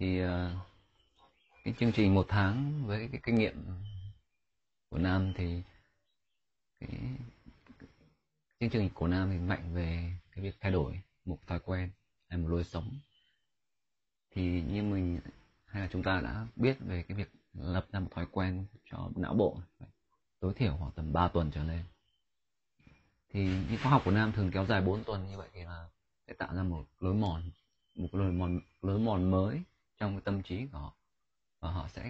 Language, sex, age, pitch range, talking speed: Vietnamese, male, 20-39, 90-110 Hz, 180 wpm